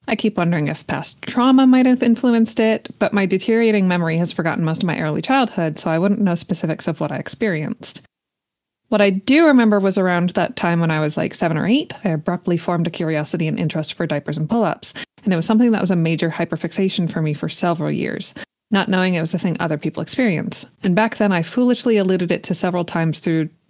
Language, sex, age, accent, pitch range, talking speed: English, female, 20-39, American, 165-215 Hz, 230 wpm